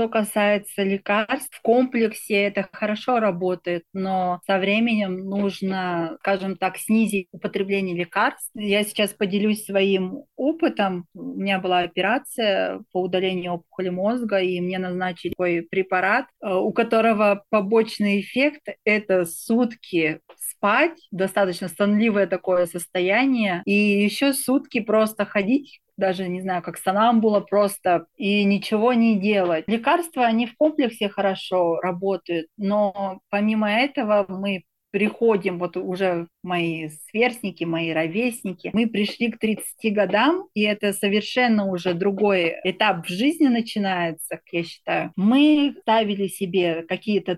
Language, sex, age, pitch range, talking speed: Russian, female, 30-49, 180-220 Hz, 125 wpm